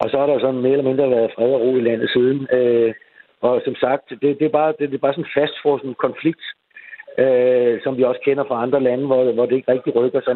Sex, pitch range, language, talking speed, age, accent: male, 115-145 Hz, Danish, 280 wpm, 60-79, native